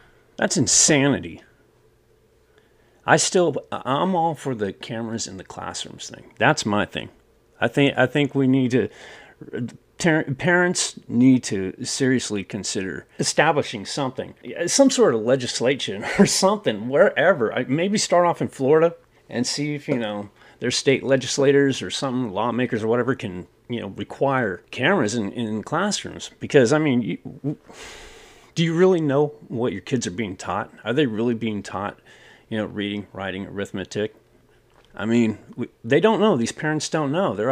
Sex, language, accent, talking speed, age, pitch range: male, English, American, 160 wpm, 30-49, 110-155 Hz